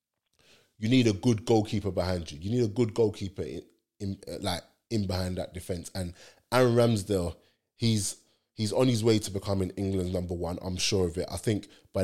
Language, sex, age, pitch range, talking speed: English, male, 20-39, 90-110 Hz, 195 wpm